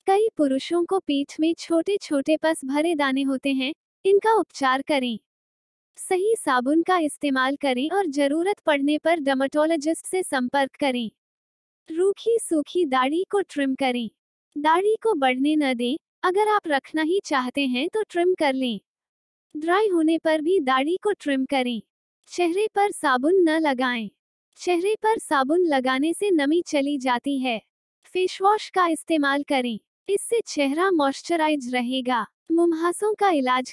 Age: 20-39